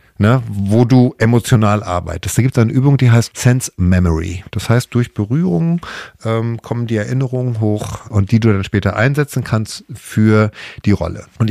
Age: 50-69